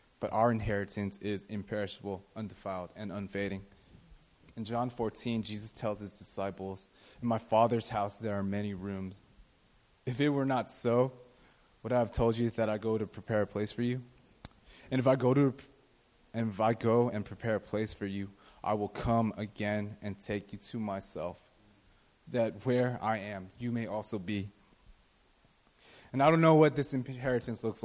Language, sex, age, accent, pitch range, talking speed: English, male, 20-39, American, 100-115 Hz, 170 wpm